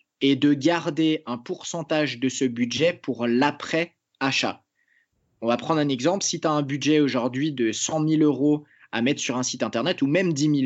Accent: French